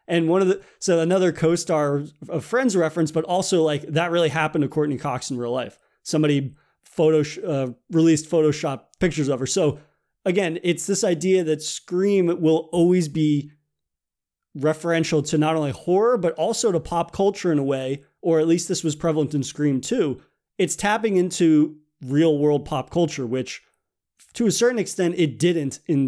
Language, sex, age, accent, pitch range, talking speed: English, male, 30-49, American, 145-175 Hz, 180 wpm